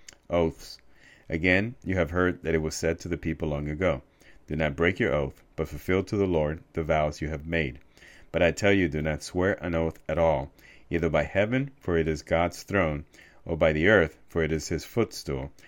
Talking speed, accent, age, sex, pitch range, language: 220 wpm, American, 40-59, male, 80-95 Hz, English